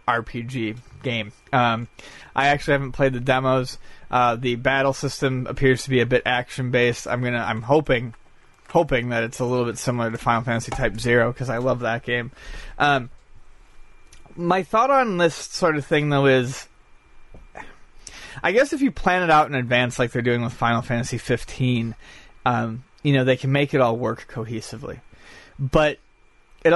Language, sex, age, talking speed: English, male, 30-49, 175 wpm